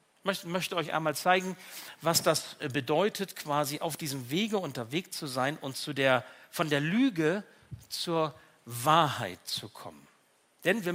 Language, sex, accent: German, male, German